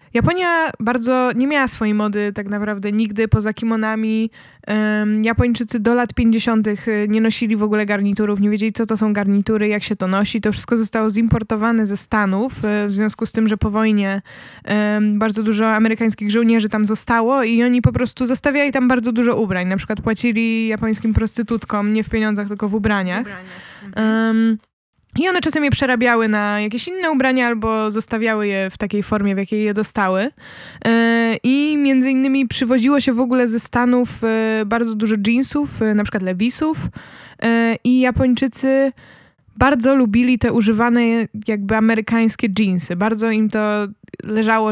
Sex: female